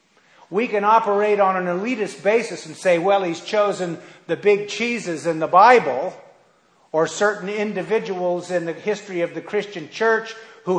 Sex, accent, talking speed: male, American, 160 wpm